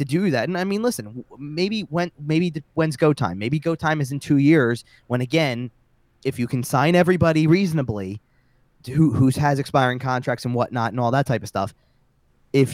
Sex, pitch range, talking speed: male, 120-155 Hz, 205 wpm